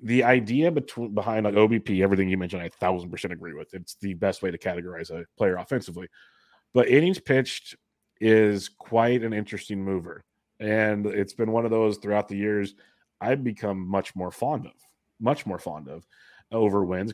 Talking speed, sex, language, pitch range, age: 180 wpm, male, English, 100-125 Hz, 30-49